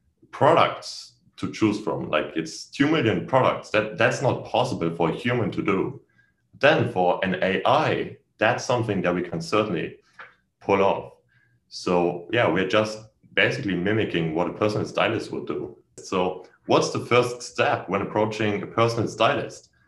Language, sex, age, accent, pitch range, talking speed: English, male, 30-49, German, 85-115 Hz, 155 wpm